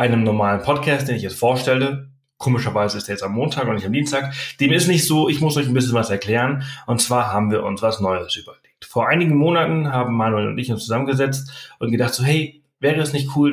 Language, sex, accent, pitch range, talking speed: German, male, German, 120-145 Hz, 235 wpm